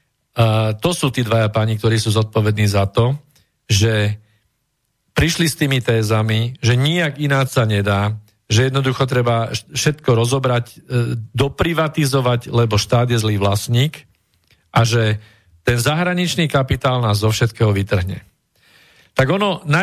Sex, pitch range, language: male, 110-140 Hz, Slovak